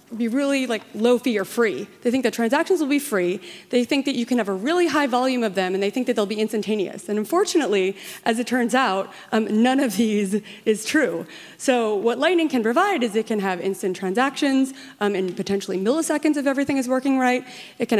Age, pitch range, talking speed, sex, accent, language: 30-49, 195-255 Hz, 225 wpm, female, American, English